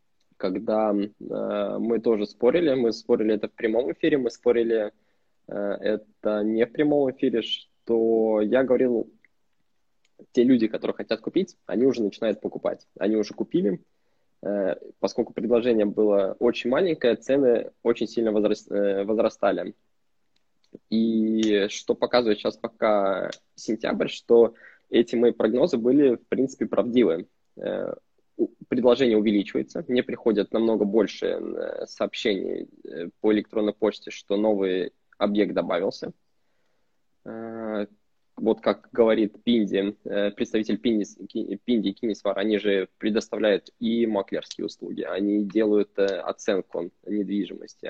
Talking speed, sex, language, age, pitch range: 115 wpm, male, Russian, 20-39, 105-120 Hz